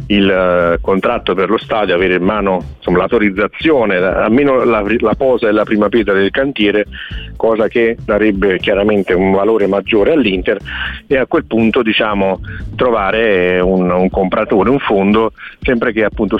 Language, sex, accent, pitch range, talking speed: Italian, male, native, 95-110 Hz, 150 wpm